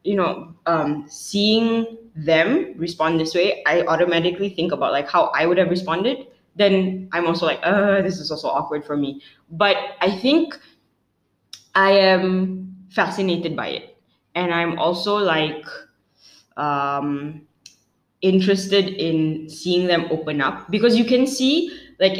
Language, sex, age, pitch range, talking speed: English, female, 10-29, 160-195 Hz, 145 wpm